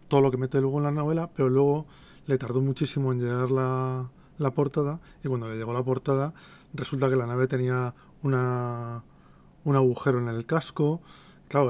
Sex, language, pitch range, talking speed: male, Spanish, 125-140 Hz, 185 wpm